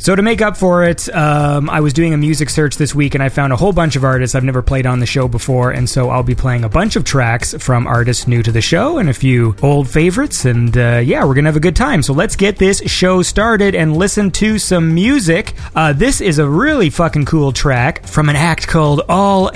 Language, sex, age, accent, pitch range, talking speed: English, male, 30-49, American, 135-185 Hz, 255 wpm